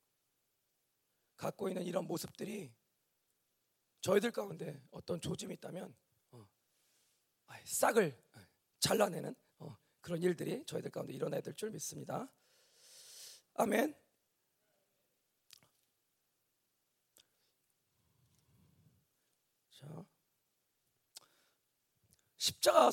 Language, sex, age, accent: Korean, male, 40-59, native